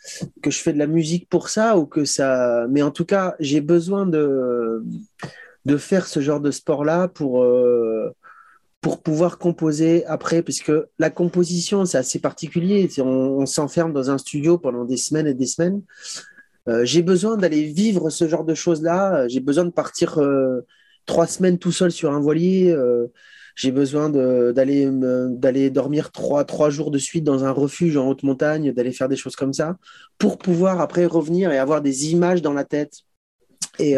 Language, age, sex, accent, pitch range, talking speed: English, 30-49, male, French, 135-175 Hz, 190 wpm